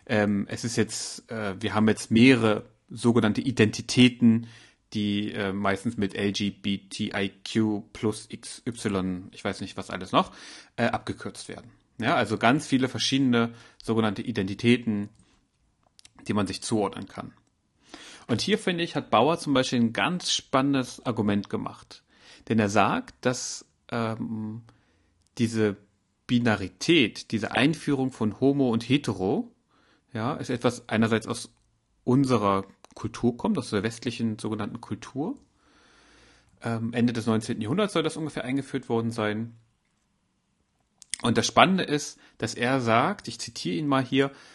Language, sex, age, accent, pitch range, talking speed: German, male, 30-49, German, 105-130 Hz, 130 wpm